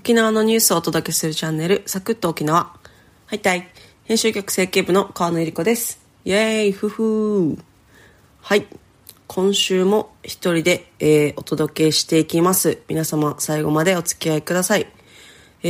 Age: 30-49